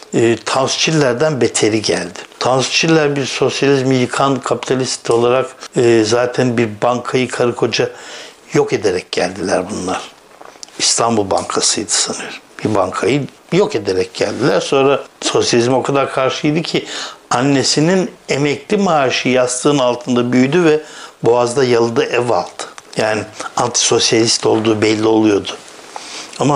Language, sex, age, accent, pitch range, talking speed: Turkish, male, 60-79, native, 115-150 Hz, 115 wpm